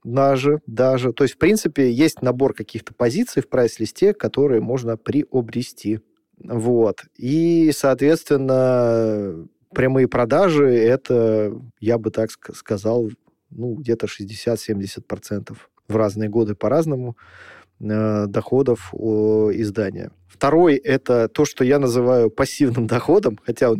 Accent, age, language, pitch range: native, 20-39, Russian, 110-130 Hz